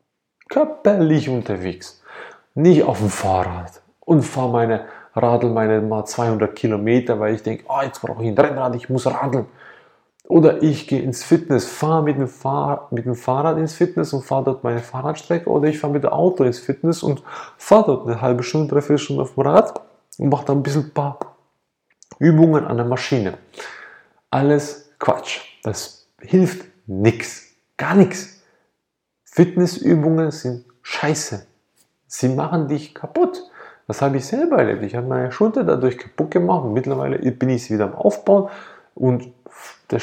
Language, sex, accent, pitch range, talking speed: German, male, German, 125-165 Hz, 165 wpm